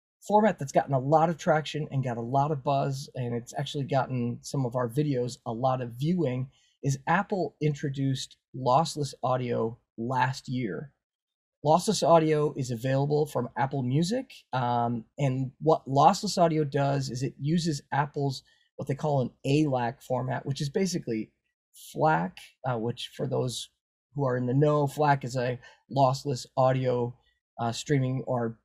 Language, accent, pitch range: English, American, 125-150 Hz